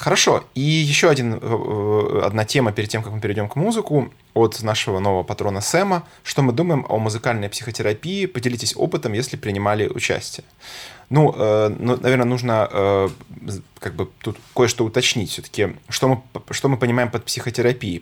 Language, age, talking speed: Russian, 20-39, 135 wpm